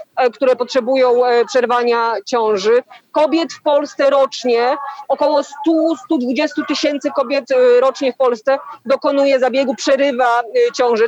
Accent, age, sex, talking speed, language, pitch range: native, 30-49, female, 105 wpm, Polish, 250-300 Hz